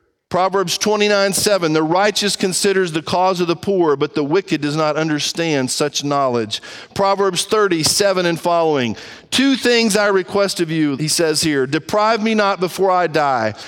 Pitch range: 175-230 Hz